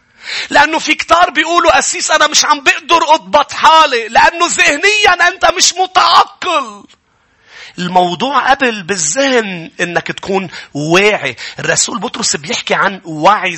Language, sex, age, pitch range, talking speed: English, male, 40-59, 175-255 Hz, 120 wpm